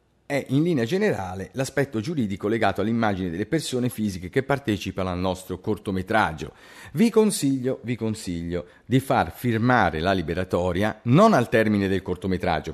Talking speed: 140 wpm